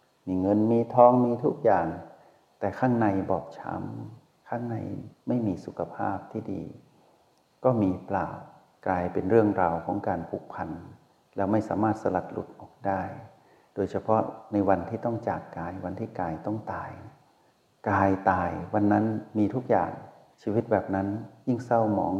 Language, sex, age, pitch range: Thai, male, 60-79, 95-115 Hz